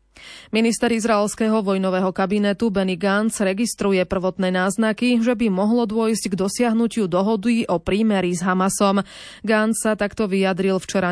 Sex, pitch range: female, 185-215 Hz